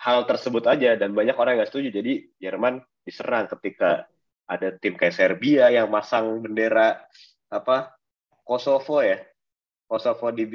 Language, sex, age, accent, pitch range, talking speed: Indonesian, male, 20-39, native, 105-130 Hz, 135 wpm